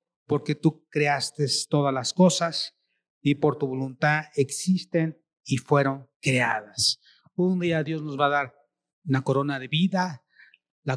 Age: 40-59